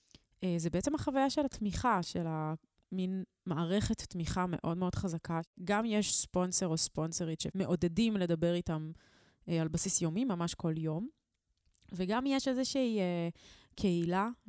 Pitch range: 165-205 Hz